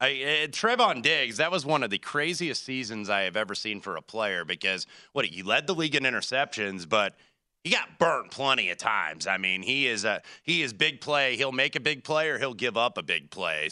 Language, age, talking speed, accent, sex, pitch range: English, 30-49, 230 wpm, American, male, 100-150 Hz